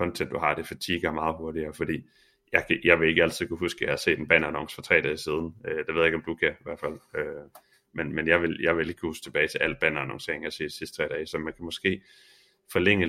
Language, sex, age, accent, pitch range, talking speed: Danish, male, 30-49, native, 80-95 Hz, 265 wpm